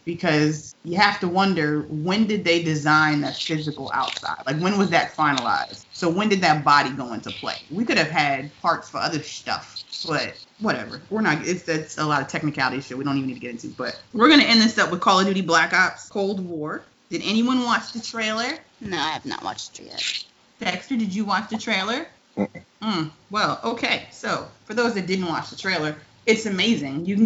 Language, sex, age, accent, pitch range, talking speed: English, female, 20-39, American, 155-215 Hz, 220 wpm